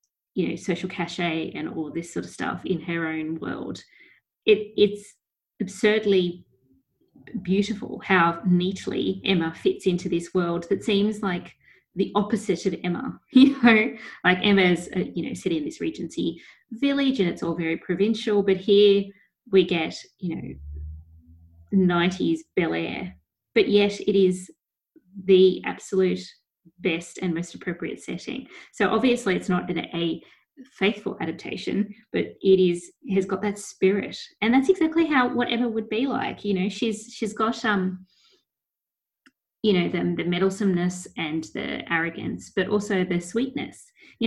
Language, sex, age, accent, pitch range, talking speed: English, female, 20-39, Australian, 175-215 Hz, 150 wpm